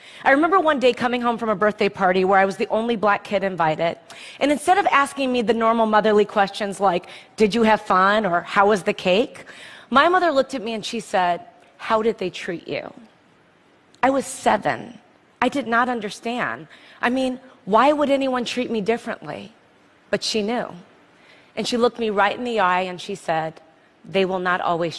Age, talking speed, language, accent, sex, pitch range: 30-49, 200 wpm, English, American, female, 195-255 Hz